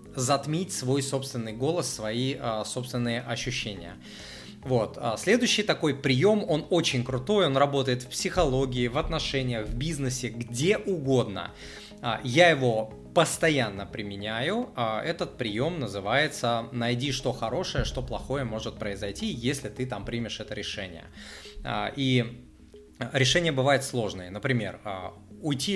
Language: Russian